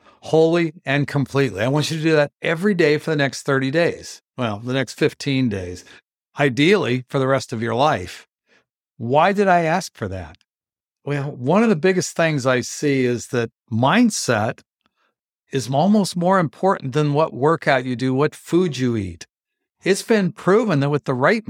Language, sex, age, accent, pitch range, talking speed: English, male, 60-79, American, 130-175 Hz, 180 wpm